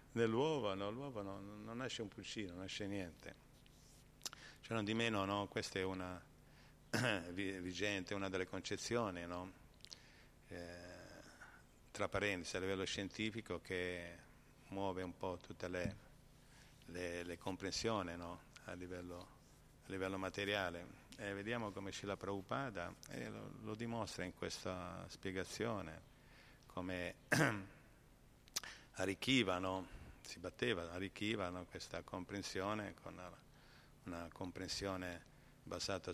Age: 50-69